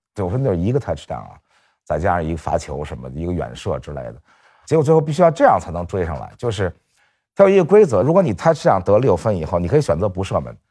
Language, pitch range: Chinese, 85-120 Hz